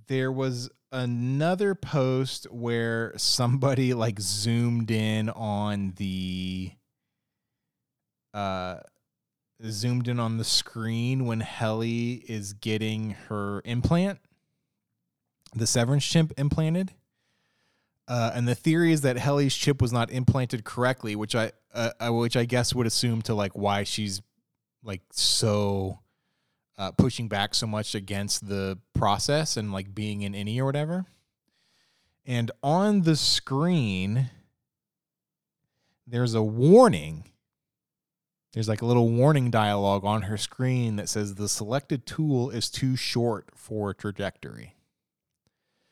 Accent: American